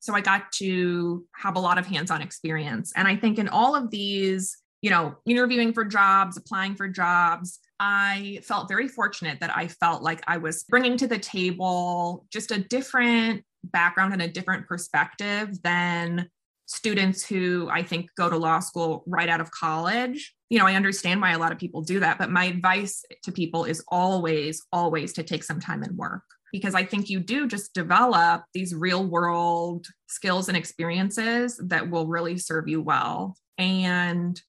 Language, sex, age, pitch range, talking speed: English, female, 20-39, 170-195 Hz, 185 wpm